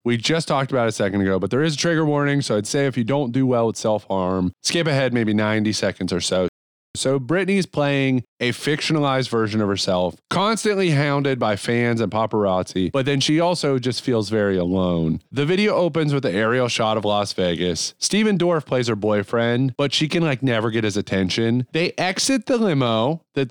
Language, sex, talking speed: English, male, 205 wpm